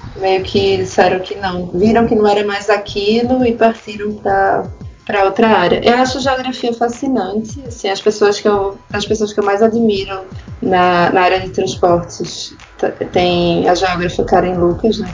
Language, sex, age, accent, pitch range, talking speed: Portuguese, female, 20-39, Brazilian, 180-220 Hz, 170 wpm